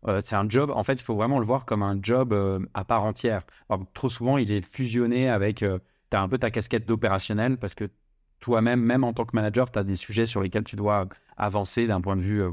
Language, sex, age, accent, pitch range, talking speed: French, male, 30-49, French, 105-125 Hz, 270 wpm